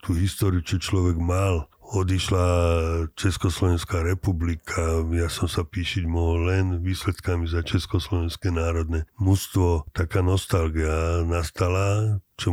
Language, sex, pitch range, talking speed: Slovak, male, 85-95 Hz, 110 wpm